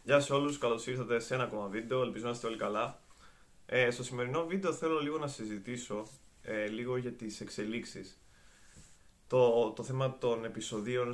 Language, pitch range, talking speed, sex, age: Greek, 105-130 Hz, 170 wpm, male, 20-39